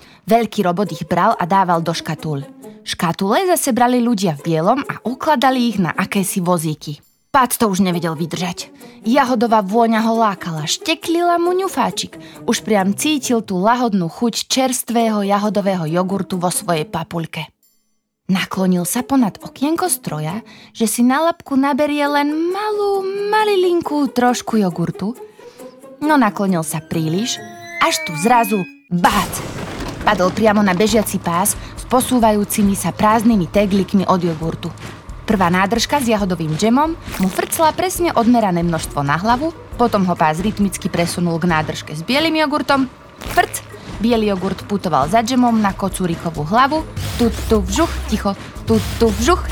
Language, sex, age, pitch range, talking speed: Slovak, female, 20-39, 180-260 Hz, 140 wpm